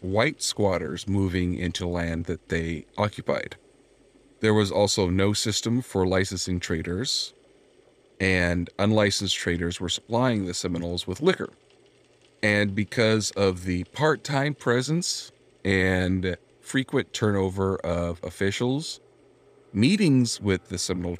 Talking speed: 115 wpm